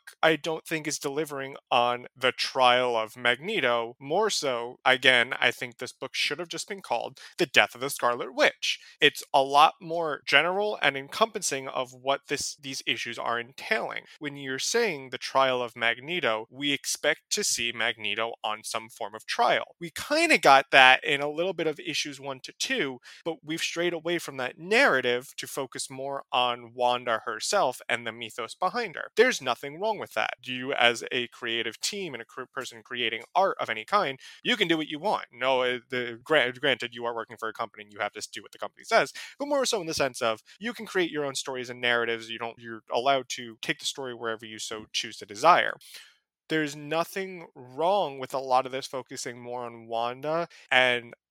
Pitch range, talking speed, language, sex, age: 120-160 Hz, 205 wpm, English, male, 20-39